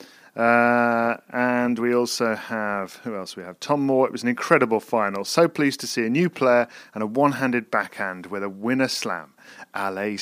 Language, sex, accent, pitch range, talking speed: English, male, British, 115-135 Hz, 190 wpm